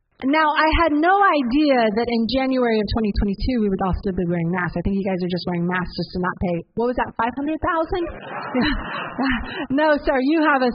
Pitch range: 195-240 Hz